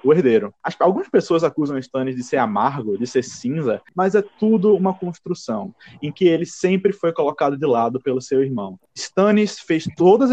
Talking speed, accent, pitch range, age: 190 wpm, Brazilian, 135-195 Hz, 20-39